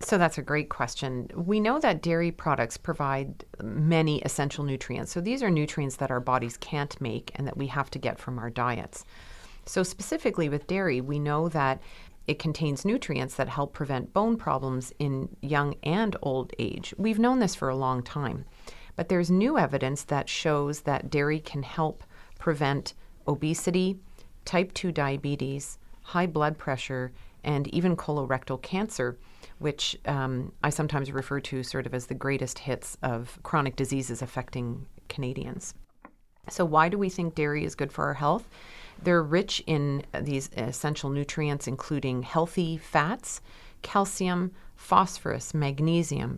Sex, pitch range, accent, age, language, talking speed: female, 130-170 Hz, American, 40-59, English, 155 wpm